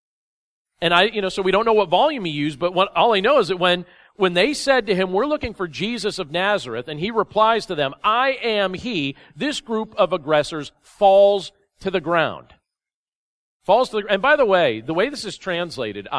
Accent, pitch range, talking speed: American, 155-205 Hz, 220 wpm